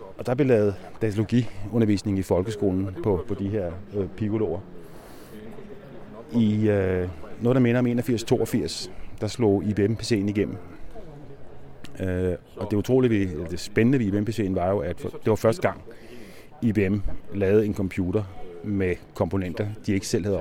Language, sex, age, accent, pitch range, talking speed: Danish, male, 30-49, native, 95-110 Hz, 155 wpm